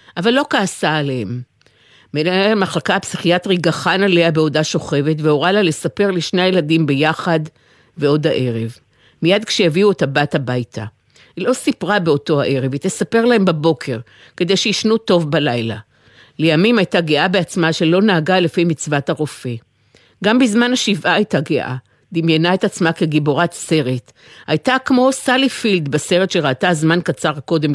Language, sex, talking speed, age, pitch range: Hebrew, female, 140 wpm, 50-69, 145-190 Hz